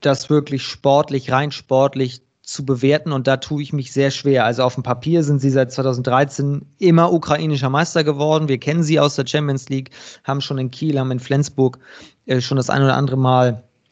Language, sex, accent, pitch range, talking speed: German, male, German, 130-160 Hz, 200 wpm